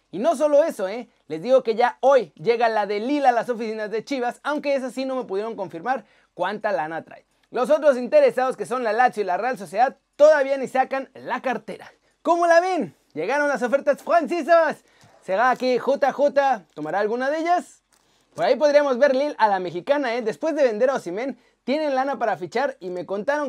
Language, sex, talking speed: Spanish, male, 205 wpm